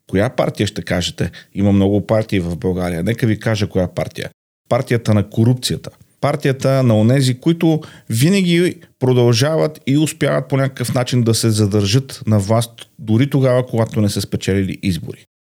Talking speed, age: 155 wpm, 40-59